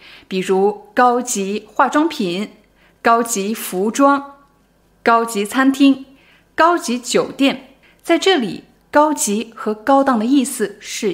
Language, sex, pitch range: Chinese, female, 200-275 Hz